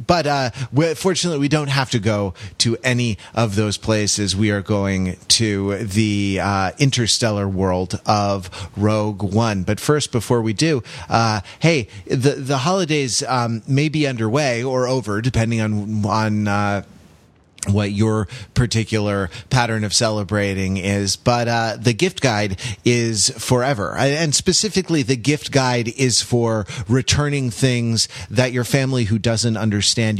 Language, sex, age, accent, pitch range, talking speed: English, male, 30-49, American, 105-125 Hz, 145 wpm